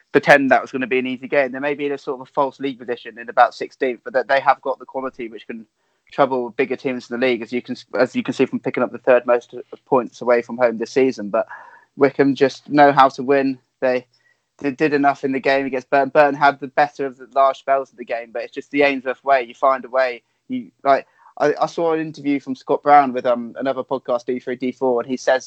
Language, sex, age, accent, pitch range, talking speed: English, male, 20-39, British, 125-140 Hz, 265 wpm